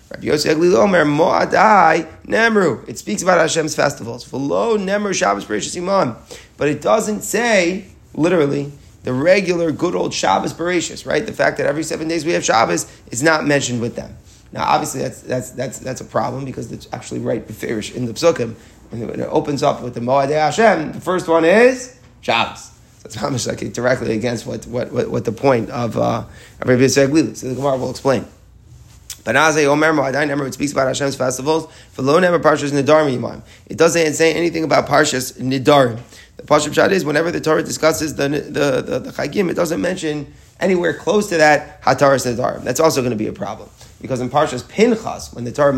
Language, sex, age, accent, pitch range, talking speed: English, male, 30-49, American, 120-160 Hz, 165 wpm